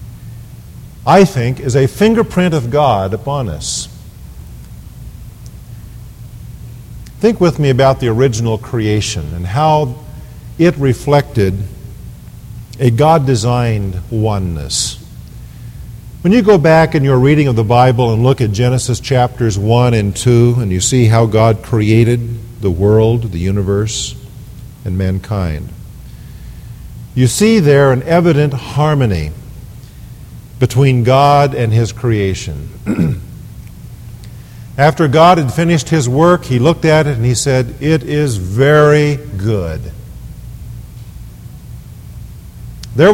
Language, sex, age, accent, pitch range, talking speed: English, male, 50-69, American, 110-145 Hz, 115 wpm